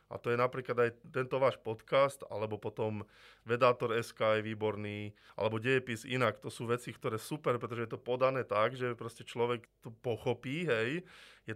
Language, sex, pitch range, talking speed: Slovak, male, 105-125 Hz, 180 wpm